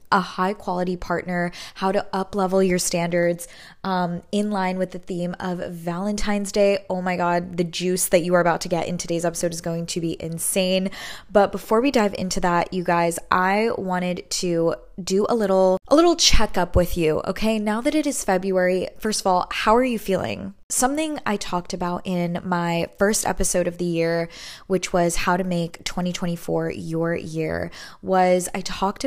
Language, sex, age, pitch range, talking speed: English, female, 20-39, 175-205 Hz, 185 wpm